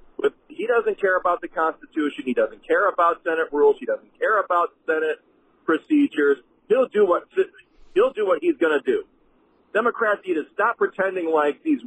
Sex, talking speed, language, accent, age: male, 175 wpm, English, American, 40-59